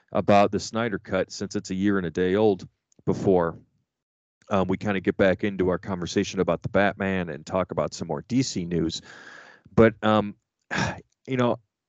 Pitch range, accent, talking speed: 90-115 Hz, American, 180 wpm